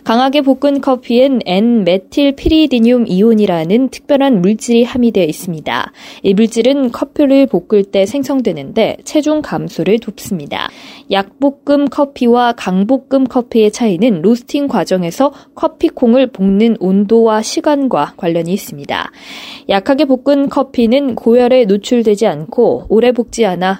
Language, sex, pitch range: Korean, female, 200-270 Hz